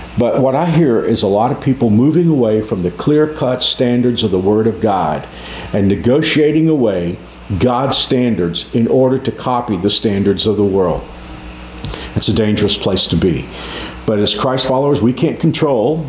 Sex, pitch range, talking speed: male, 95-130 Hz, 175 wpm